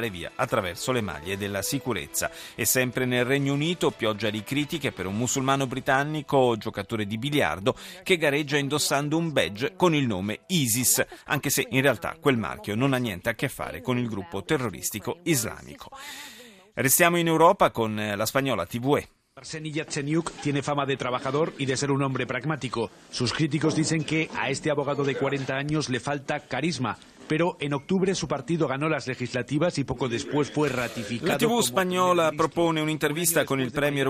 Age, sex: 40-59, male